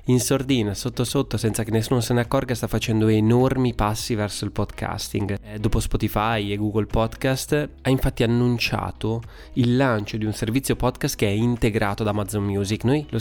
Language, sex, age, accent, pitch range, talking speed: Italian, male, 20-39, native, 105-125 Hz, 175 wpm